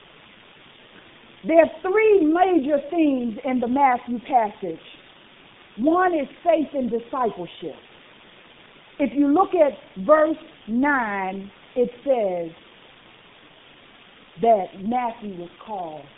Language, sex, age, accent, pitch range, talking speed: English, female, 50-69, American, 250-340 Hz, 95 wpm